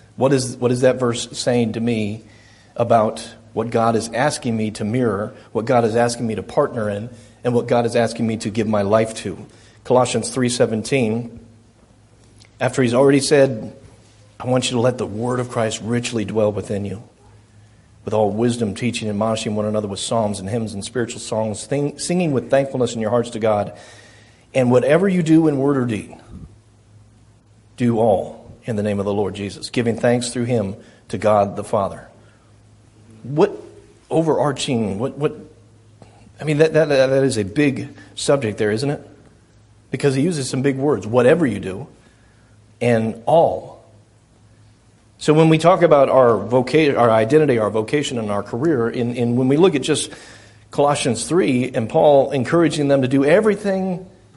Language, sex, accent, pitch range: English, male, American, 110-130 Hz